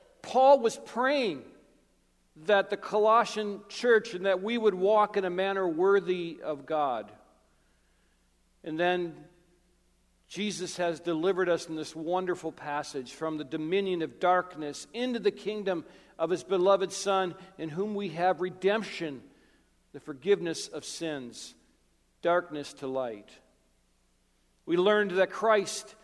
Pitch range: 165-205 Hz